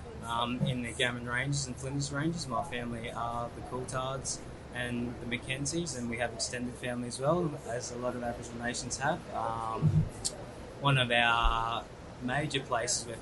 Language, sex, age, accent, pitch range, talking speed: English, male, 20-39, Australian, 115-130 Hz, 170 wpm